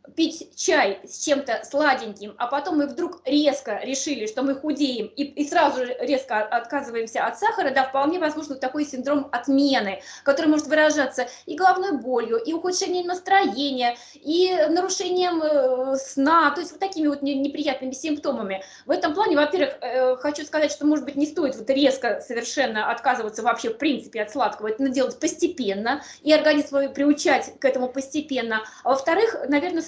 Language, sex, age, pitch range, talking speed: Russian, female, 20-39, 250-310 Hz, 165 wpm